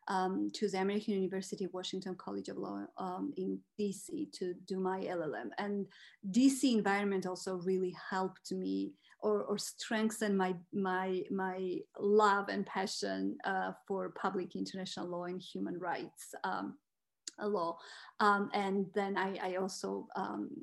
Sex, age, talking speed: female, 30-49, 145 wpm